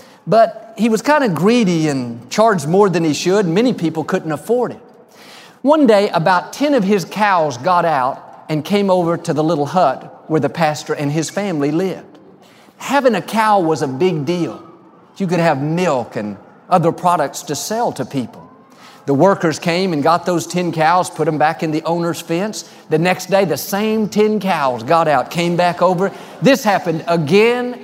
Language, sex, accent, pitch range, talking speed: English, male, American, 165-220 Hz, 190 wpm